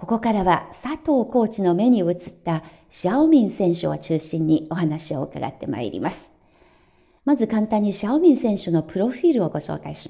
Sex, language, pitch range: female, Japanese, 165-245 Hz